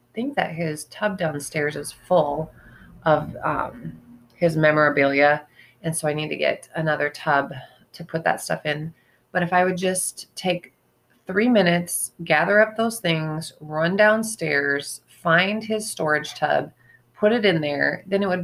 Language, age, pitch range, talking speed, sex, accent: English, 30-49, 150-185 Hz, 160 wpm, female, American